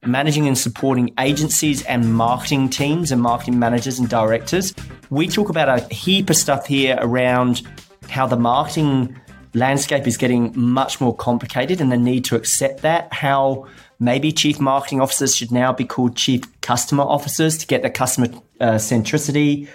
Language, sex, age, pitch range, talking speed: English, male, 30-49, 120-145 Hz, 165 wpm